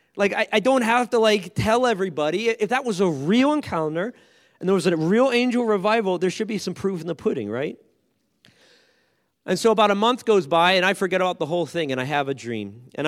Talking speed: 235 wpm